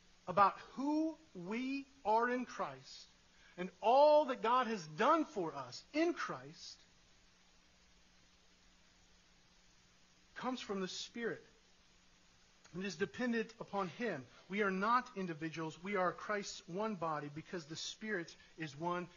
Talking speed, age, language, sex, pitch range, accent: 120 wpm, 40-59, English, male, 180-240 Hz, American